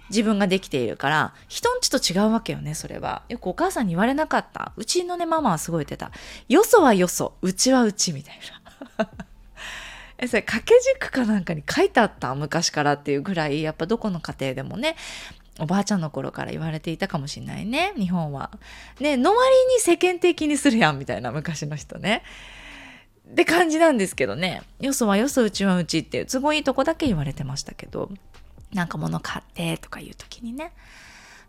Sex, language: female, Japanese